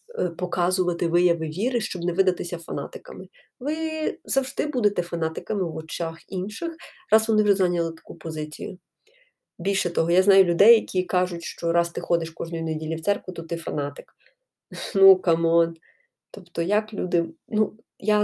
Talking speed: 150 wpm